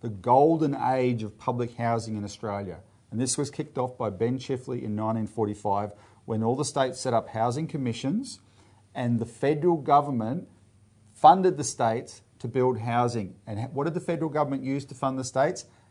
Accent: Australian